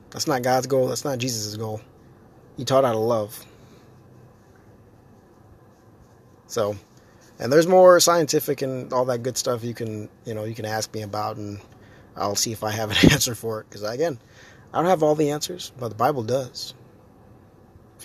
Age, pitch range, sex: 20-39, 110-150 Hz, male